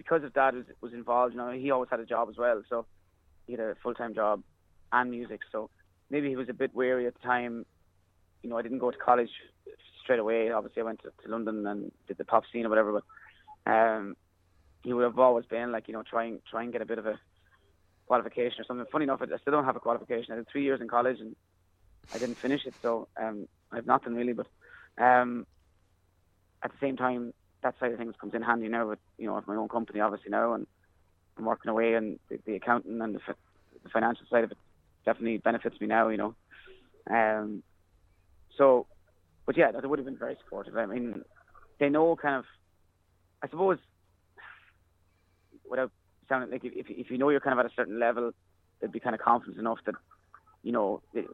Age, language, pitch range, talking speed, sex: 20-39, English, 95-125 Hz, 220 wpm, male